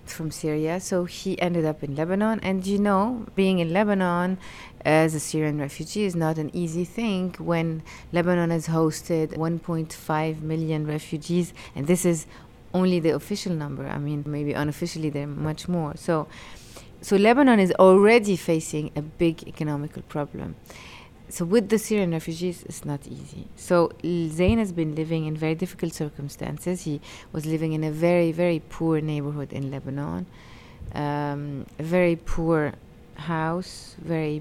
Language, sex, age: English, female, 30-49